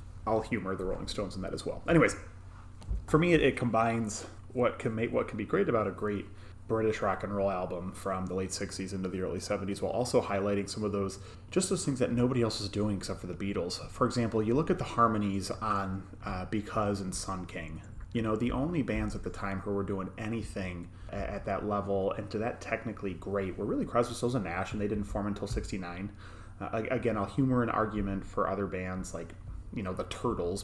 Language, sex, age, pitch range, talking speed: English, male, 30-49, 95-110 Hz, 225 wpm